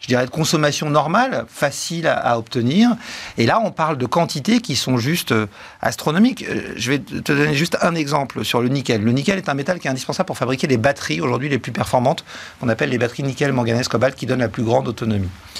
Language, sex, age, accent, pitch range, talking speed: French, male, 50-69, French, 125-170 Hz, 225 wpm